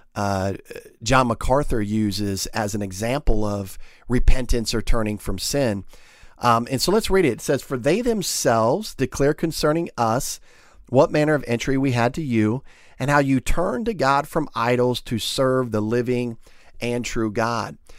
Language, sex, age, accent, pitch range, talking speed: English, male, 40-59, American, 115-150 Hz, 165 wpm